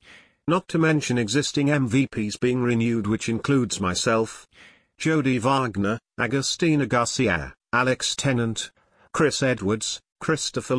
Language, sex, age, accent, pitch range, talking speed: English, male, 40-59, British, 95-135 Hz, 105 wpm